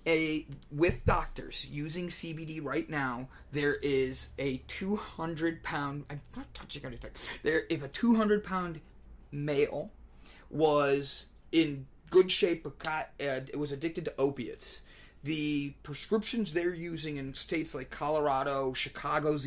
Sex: male